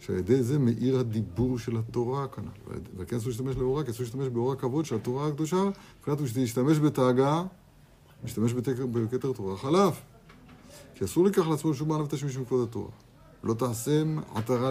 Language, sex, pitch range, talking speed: Hebrew, male, 115-145 Hz, 170 wpm